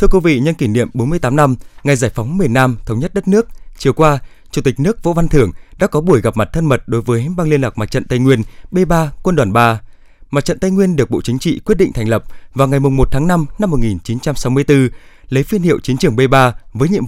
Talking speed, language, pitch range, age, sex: 290 wpm, Vietnamese, 120-165 Hz, 20-39, male